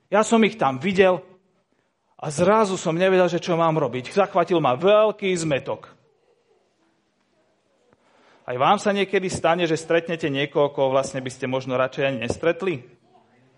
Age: 40-59